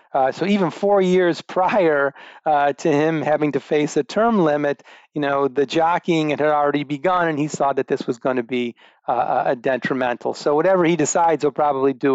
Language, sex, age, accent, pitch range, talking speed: English, male, 40-59, American, 135-170 Hz, 200 wpm